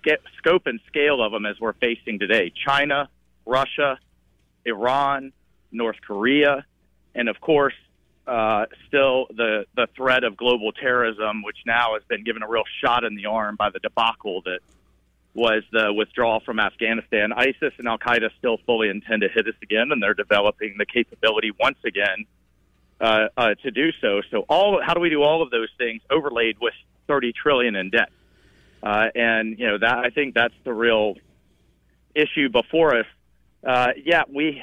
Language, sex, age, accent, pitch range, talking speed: English, male, 40-59, American, 110-140 Hz, 175 wpm